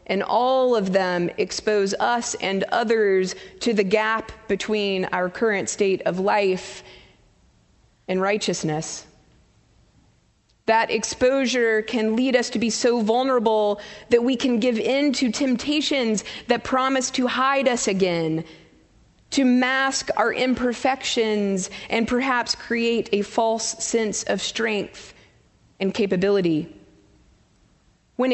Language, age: English, 30-49